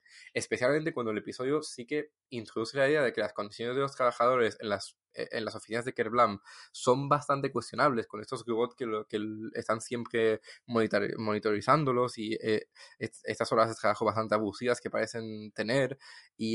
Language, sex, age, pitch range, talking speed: English, male, 20-39, 110-135 Hz, 165 wpm